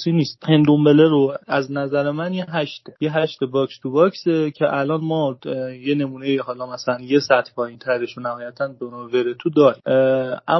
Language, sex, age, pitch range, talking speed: Persian, male, 30-49, 125-155 Hz, 160 wpm